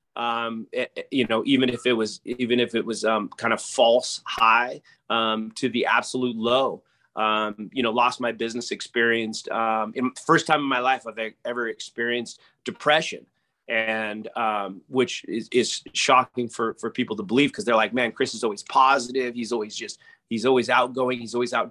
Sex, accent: male, American